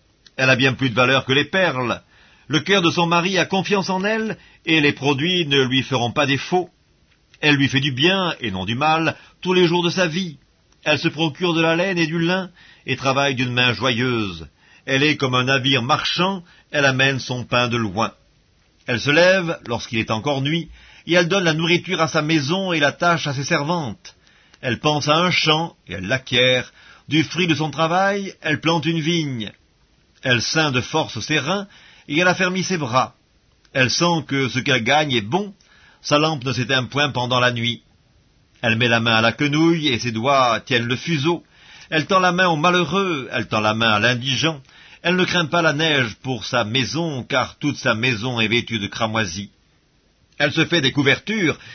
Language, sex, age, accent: French, male, 50-69, French